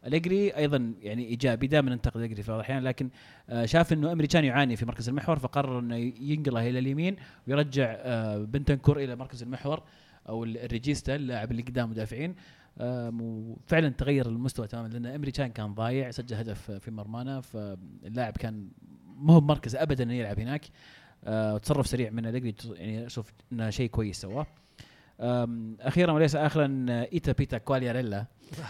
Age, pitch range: 30-49, 115-140 Hz